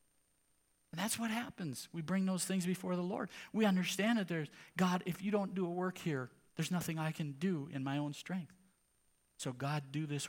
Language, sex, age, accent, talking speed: English, male, 50-69, American, 210 wpm